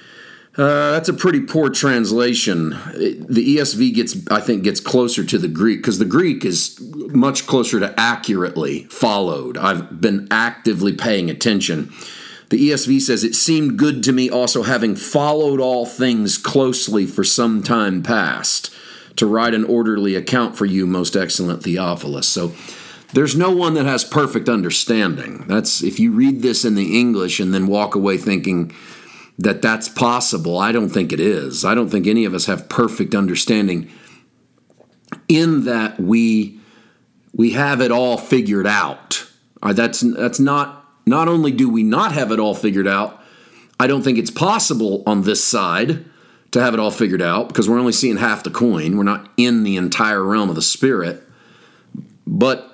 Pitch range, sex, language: 105-140 Hz, male, English